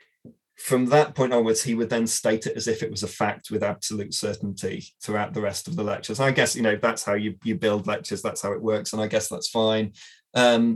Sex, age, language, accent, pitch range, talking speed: male, 30-49, English, British, 105-130 Hz, 245 wpm